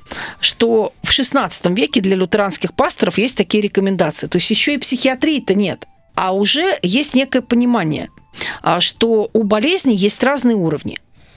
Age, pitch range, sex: 40-59, 190-260 Hz, female